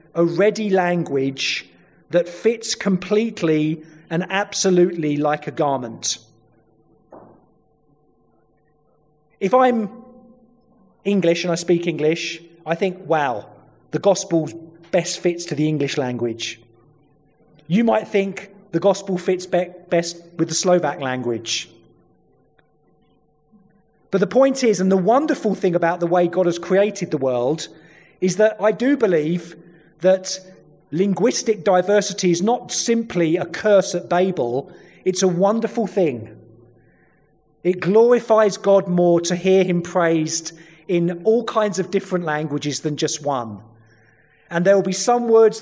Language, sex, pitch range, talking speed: Slovak, male, 150-200 Hz, 130 wpm